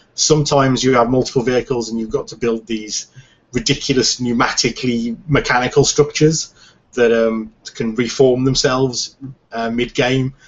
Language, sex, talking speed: English, male, 125 wpm